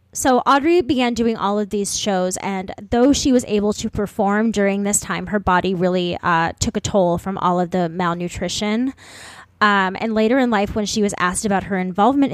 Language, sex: English, female